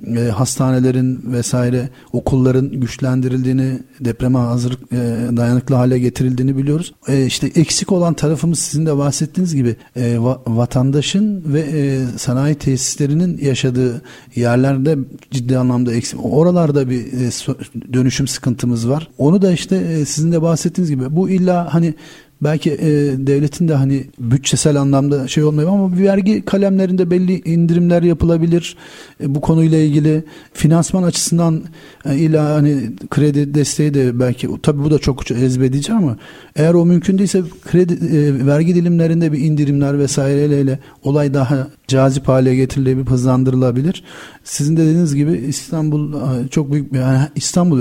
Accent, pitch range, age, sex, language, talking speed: native, 130-160 Hz, 40-59, male, Turkish, 130 wpm